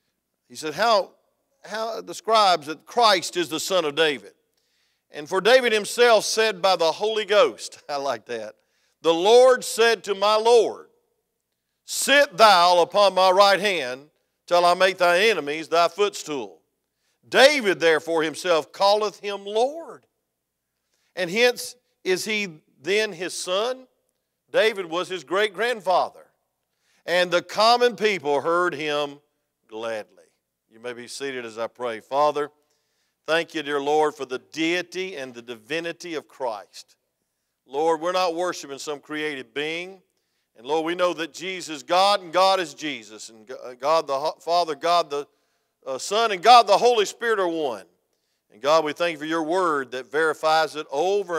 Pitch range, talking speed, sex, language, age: 150-200 Hz, 155 wpm, male, English, 50-69